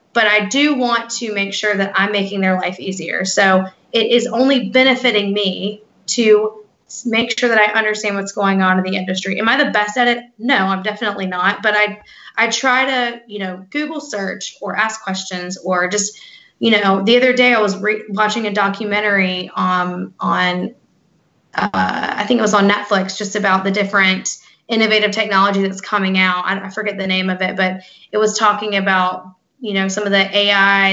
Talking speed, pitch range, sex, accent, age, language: 195 wpm, 190-215 Hz, female, American, 20-39, English